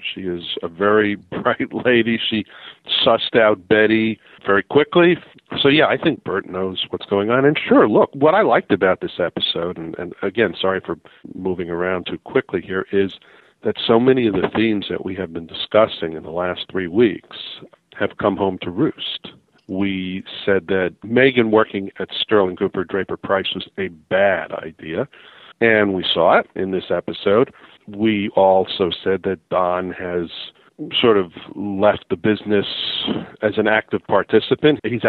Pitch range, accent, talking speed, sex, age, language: 95-110 Hz, American, 170 wpm, male, 50-69, English